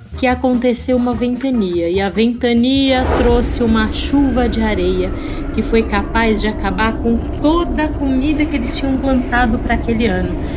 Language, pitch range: Portuguese, 215-290 Hz